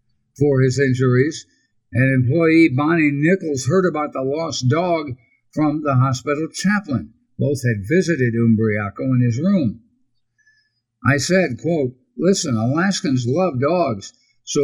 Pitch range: 130-180 Hz